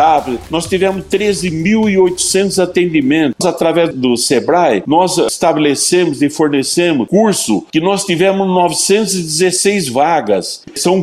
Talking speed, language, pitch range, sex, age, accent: 100 wpm, Portuguese, 145-185 Hz, male, 60-79, Brazilian